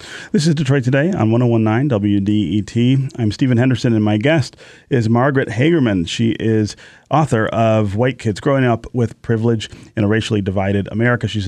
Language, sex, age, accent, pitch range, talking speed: English, male, 30-49, American, 100-130 Hz, 165 wpm